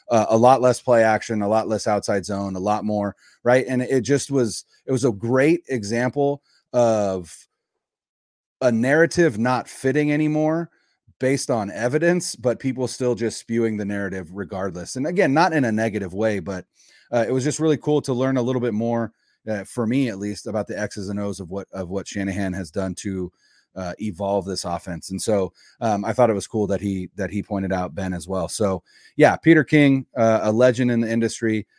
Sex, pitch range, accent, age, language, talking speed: male, 95-125 Hz, American, 30-49, English, 205 wpm